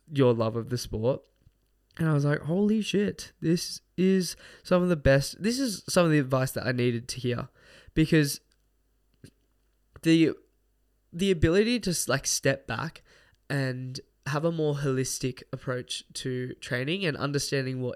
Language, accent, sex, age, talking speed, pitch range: English, Australian, male, 10-29, 155 wpm, 125-150 Hz